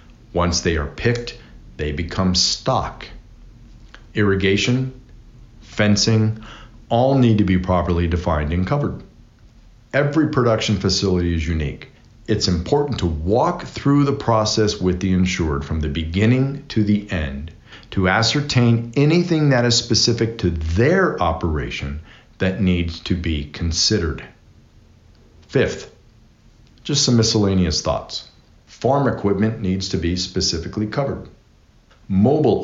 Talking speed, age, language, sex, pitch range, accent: 120 wpm, 50-69, English, male, 85-115 Hz, American